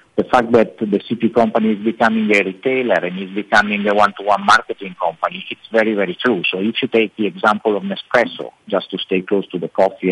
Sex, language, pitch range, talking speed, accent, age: male, English, 95-120 Hz, 215 wpm, Italian, 50-69